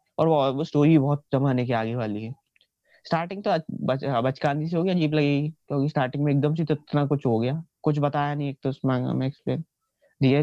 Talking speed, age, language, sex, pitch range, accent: 195 wpm, 20-39, Hindi, male, 125-155 Hz, native